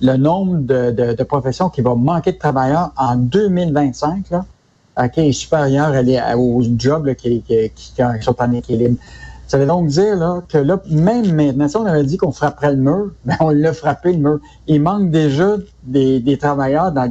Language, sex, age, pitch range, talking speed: French, male, 60-79, 130-170 Hz, 200 wpm